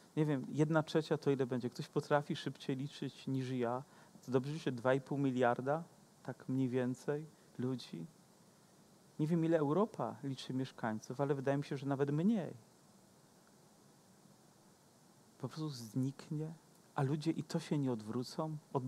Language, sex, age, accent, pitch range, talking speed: Polish, male, 40-59, native, 135-175 Hz, 145 wpm